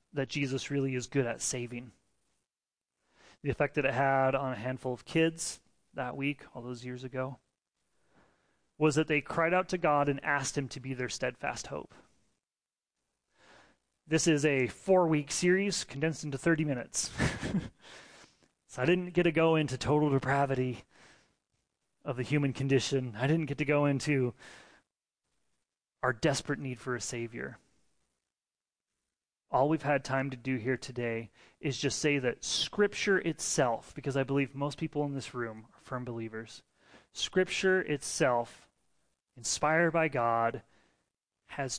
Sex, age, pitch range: male, 30-49, 125-155 Hz